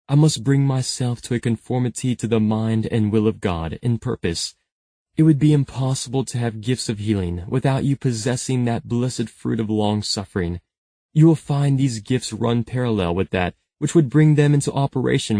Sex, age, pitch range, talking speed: male, 20-39, 110-140 Hz, 185 wpm